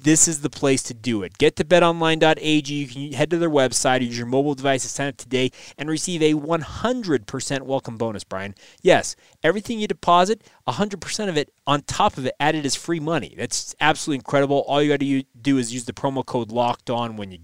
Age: 20-39